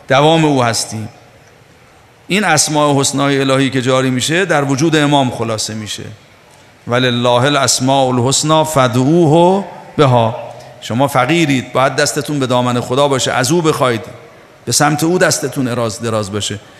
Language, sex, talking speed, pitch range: Persian, male, 140 wpm, 120-145 Hz